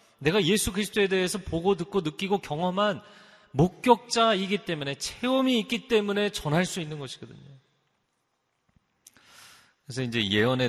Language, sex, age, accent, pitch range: Korean, male, 40-59, native, 115-165 Hz